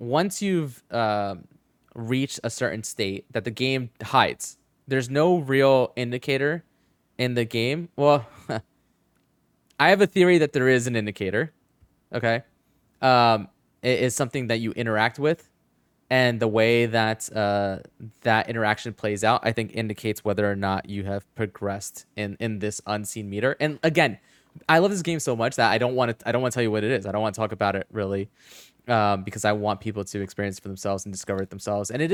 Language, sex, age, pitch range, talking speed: English, male, 20-39, 105-125 Hz, 200 wpm